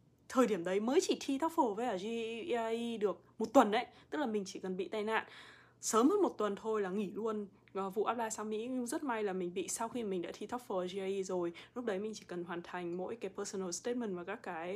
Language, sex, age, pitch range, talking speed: Vietnamese, female, 20-39, 190-235 Hz, 255 wpm